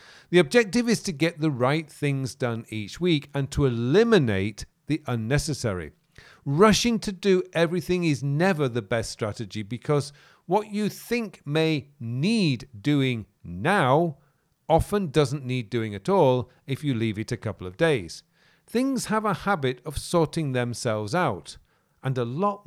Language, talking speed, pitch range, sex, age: English, 155 wpm, 115-165 Hz, male, 40-59